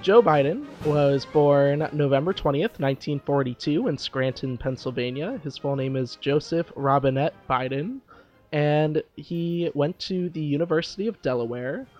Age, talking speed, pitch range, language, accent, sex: 20-39, 125 wpm, 135-170 Hz, English, American, male